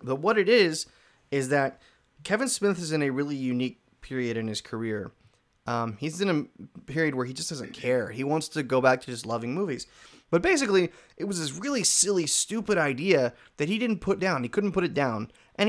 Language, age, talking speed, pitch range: English, 20-39, 215 wpm, 120-165 Hz